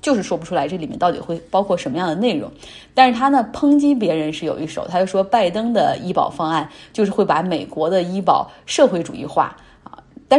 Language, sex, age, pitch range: Chinese, female, 20-39, 180-245 Hz